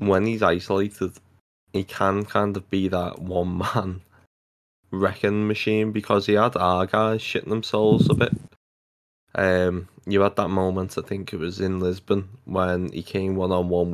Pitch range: 90-105 Hz